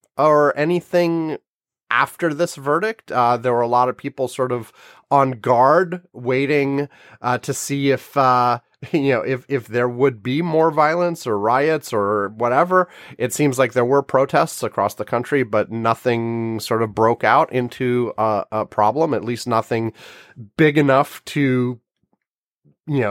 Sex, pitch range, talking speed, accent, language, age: male, 110-145 Hz, 160 wpm, American, English, 30-49